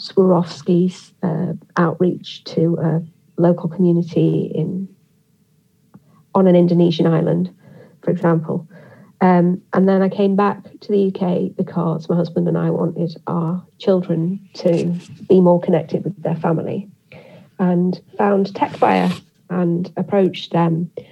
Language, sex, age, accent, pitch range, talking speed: English, female, 40-59, British, 170-190 Hz, 125 wpm